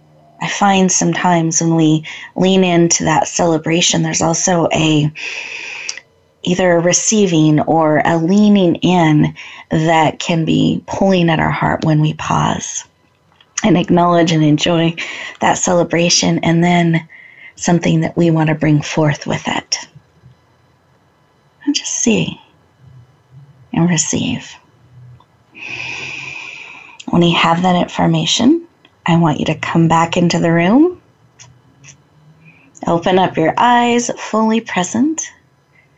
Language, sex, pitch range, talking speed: English, female, 155-200 Hz, 115 wpm